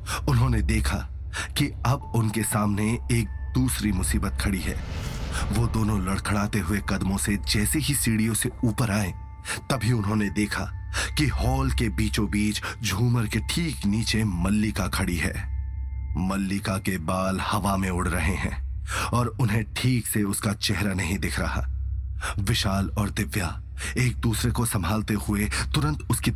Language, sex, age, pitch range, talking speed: Hindi, male, 30-49, 95-120 Hz, 145 wpm